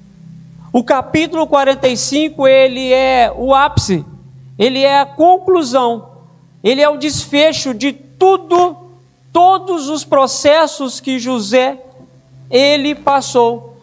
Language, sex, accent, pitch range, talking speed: Portuguese, male, Brazilian, 220-295 Hz, 105 wpm